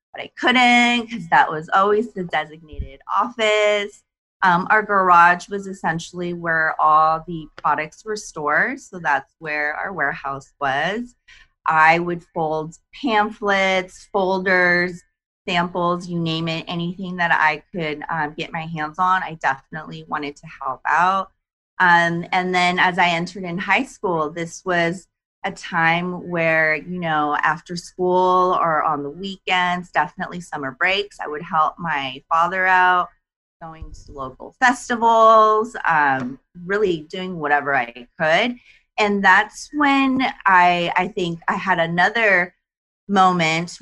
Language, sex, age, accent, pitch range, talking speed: English, female, 30-49, American, 165-200 Hz, 140 wpm